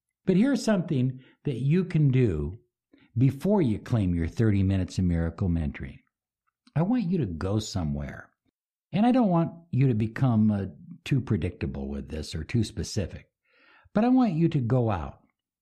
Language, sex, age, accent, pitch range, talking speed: English, male, 60-79, American, 95-135 Hz, 170 wpm